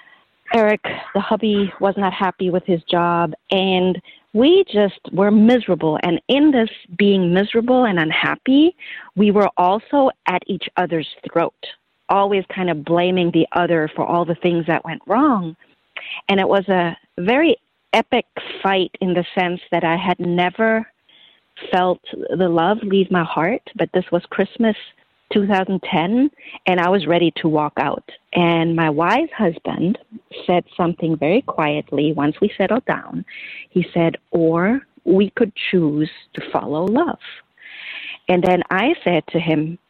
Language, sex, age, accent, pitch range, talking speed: English, female, 40-59, American, 170-210 Hz, 150 wpm